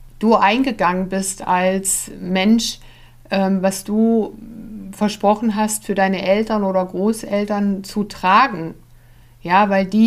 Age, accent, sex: 60-79, German, female